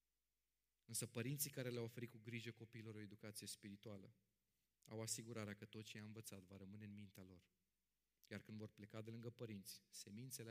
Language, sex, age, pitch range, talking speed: Romanian, male, 30-49, 100-115 Hz, 175 wpm